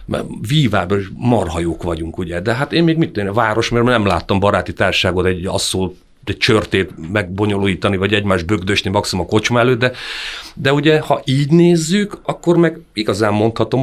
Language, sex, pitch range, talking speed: Hungarian, male, 95-125 Hz, 170 wpm